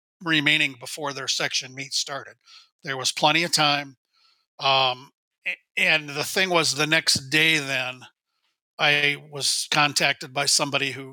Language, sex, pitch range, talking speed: English, male, 140-180 Hz, 140 wpm